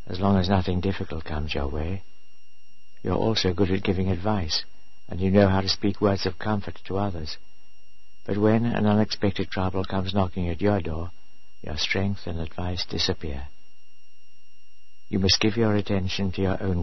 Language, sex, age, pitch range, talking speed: English, male, 60-79, 85-100 Hz, 175 wpm